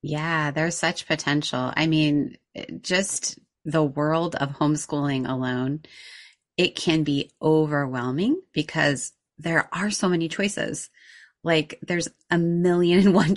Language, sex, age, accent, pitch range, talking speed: English, female, 30-49, American, 140-165 Hz, 125 wpm